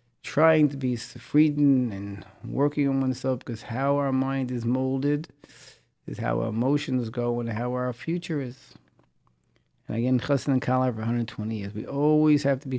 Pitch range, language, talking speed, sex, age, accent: 110-145 Hz, English, 175 wpm, male, 50-69, American